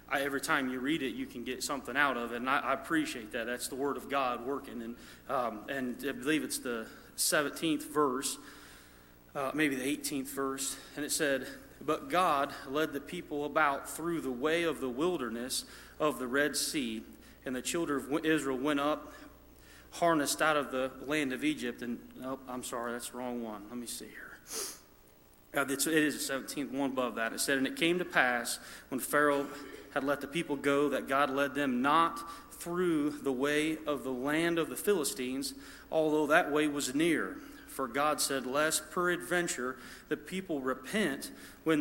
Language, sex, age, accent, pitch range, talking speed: English, male, 30-49, American, 130-155 Hz, 190 wpm